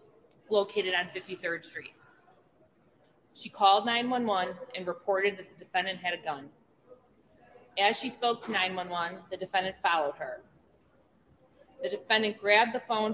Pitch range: 180-220 Hz